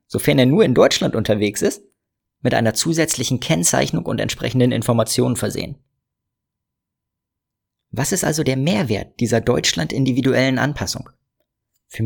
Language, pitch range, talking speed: German, 115-140 Hz, 120 wpm